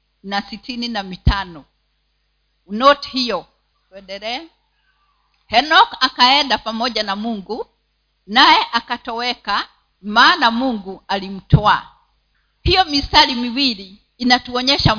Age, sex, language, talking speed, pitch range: 50-69, female, Swahili, 85 wpm, 220-280 Hz